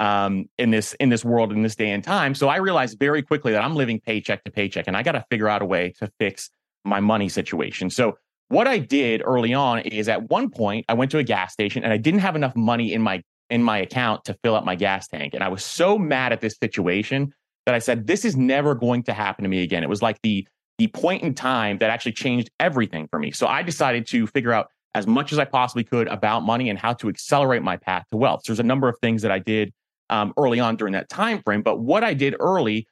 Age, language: 30-49, English